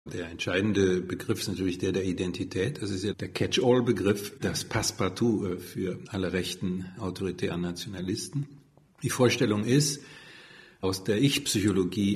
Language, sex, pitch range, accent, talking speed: German, male, 90-110 Hz, German, 130 wpm